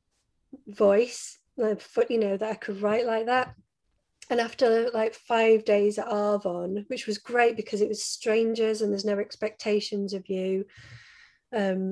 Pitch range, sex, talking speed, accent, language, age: 200-225 Hz, female, 160 wpm, British, English, 30-49